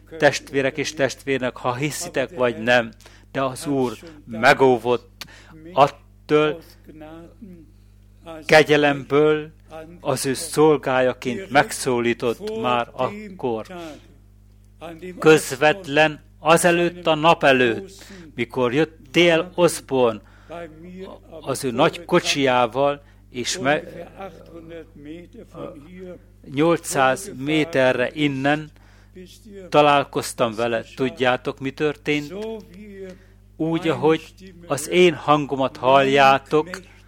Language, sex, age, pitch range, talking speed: Hungarian, male, 60-79, 125-165 Hz, 75 wpm